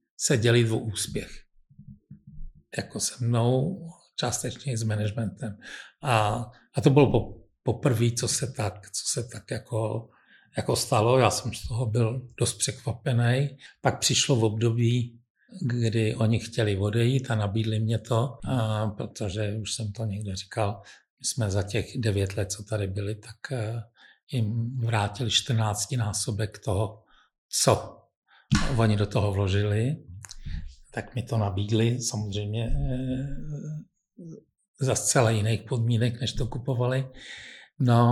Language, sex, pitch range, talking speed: Czech, male, 110-125 Hz, 135 wpm